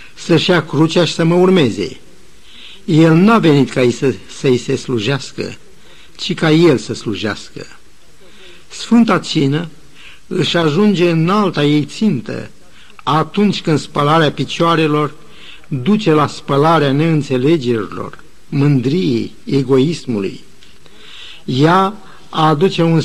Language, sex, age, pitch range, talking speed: Romanian, male, 60-79, 135-170 Hz, 110 wpm